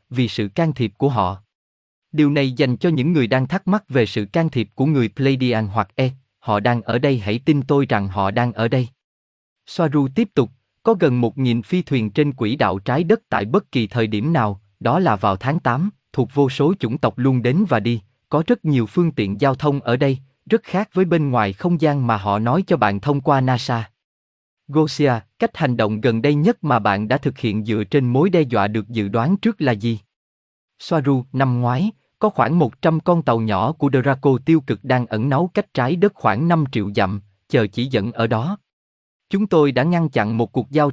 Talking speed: 225 wpm